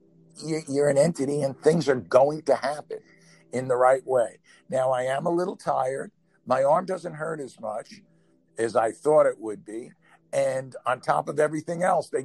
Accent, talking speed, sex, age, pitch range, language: American, 185 wpm, male, 60-79, 110-155 Hz, English